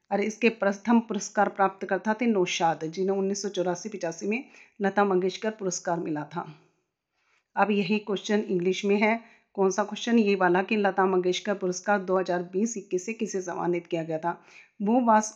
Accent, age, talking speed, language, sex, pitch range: native, 40-59, 165 wpm, Hindi, female, 180-215 Hz